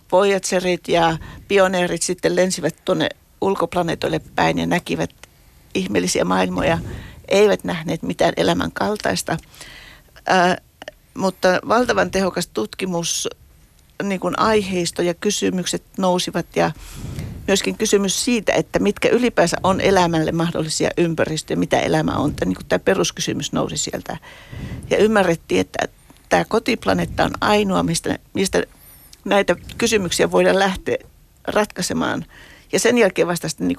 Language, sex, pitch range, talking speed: Finnish, female, 145-195 Hz, 125 wpm